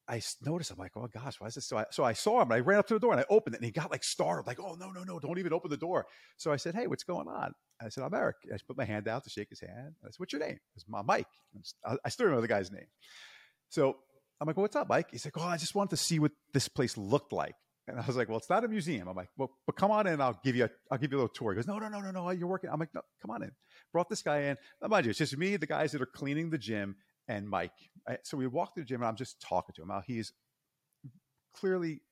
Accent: American